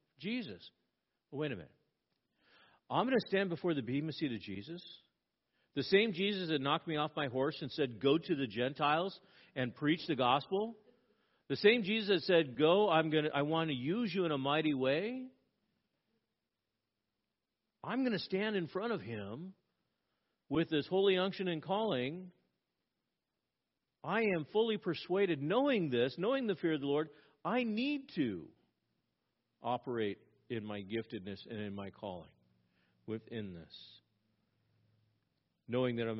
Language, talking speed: English, 150 wpm